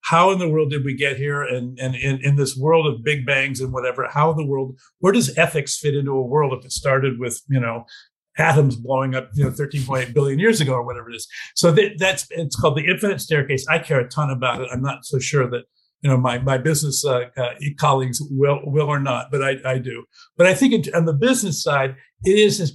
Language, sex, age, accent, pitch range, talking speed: English, male, 50-69, American, 135-160 Hz, 245 wpm